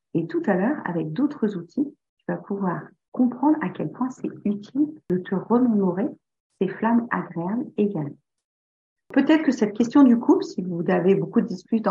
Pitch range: 180-240 Hz